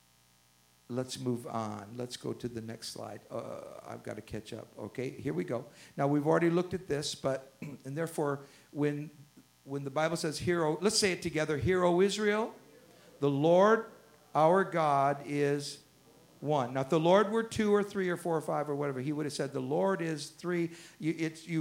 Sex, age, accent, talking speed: male, 50-69, American, 195 wpm